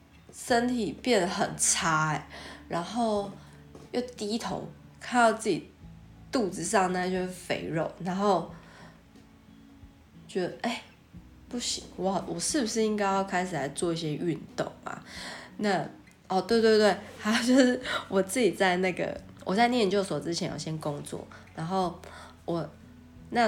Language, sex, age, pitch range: Chinese, female, 20-39, 170-235 Hz